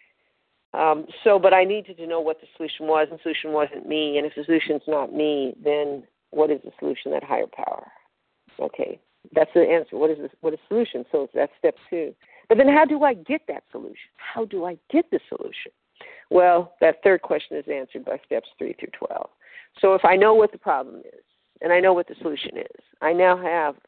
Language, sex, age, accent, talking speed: English, female, 50-69, American, 220 wpm